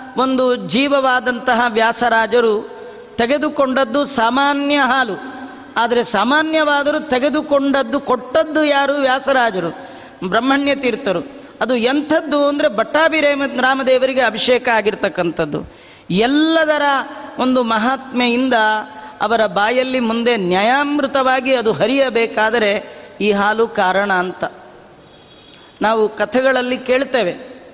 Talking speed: 80 wpm